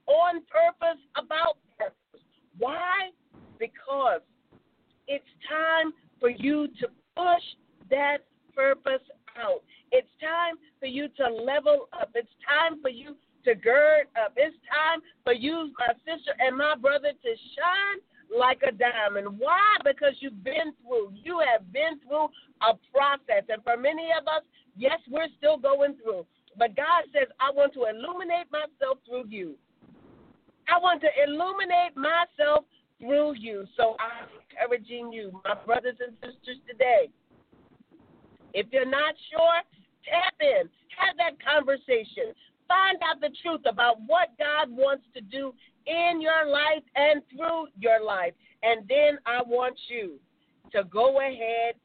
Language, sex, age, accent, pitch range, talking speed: English, female, 50-69, American, 245-320 Hz, 145 wpm